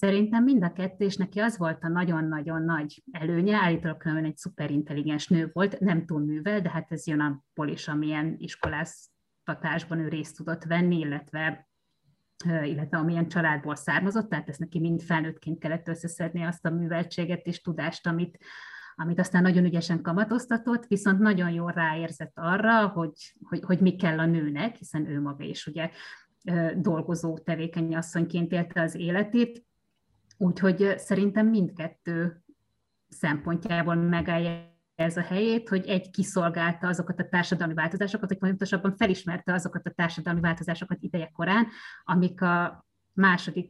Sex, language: female, Hungarian